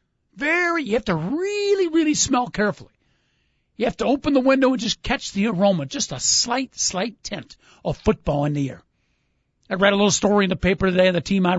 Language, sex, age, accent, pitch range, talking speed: English, male, 50-69, American, 180-240 Hz, 215 wpm